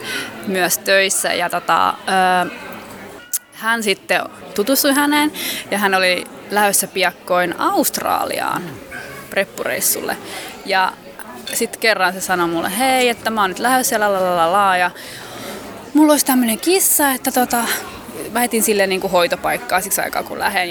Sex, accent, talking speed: female, native, 140 wpm